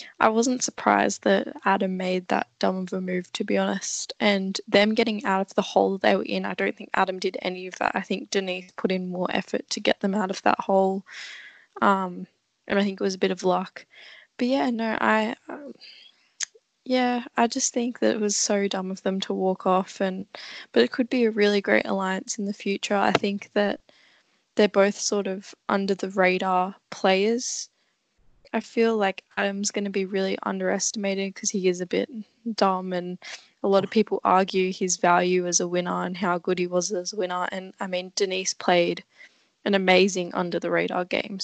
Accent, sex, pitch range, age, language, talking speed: Australian, female, 185-215 Hz, 10-29, English, 205 wpm